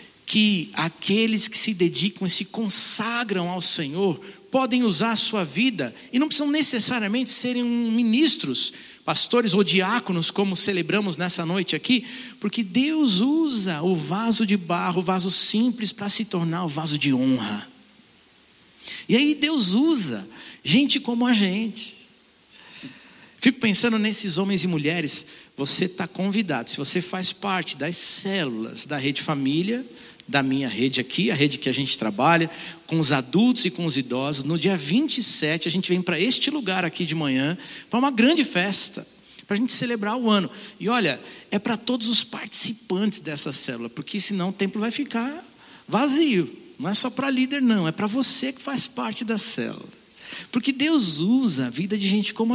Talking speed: 170 wpm